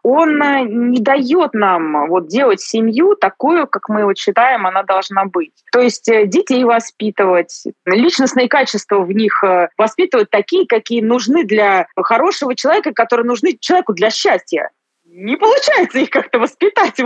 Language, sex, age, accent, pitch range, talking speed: Russian, female, 20-39, native, 200-285 Hz, 140 wpm